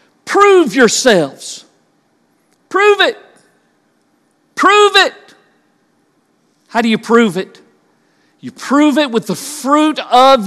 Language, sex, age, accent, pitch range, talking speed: English, male, 50-69, American, 200-270 Hz, 105 wpm